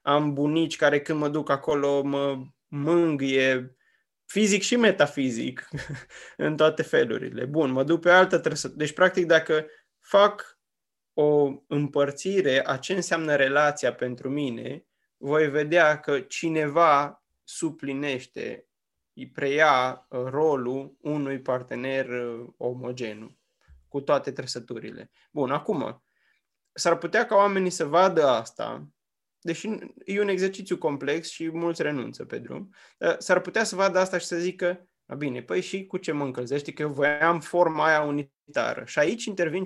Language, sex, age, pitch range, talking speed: Romanian, male, 20-39, 140-170 Hz, 140 wpm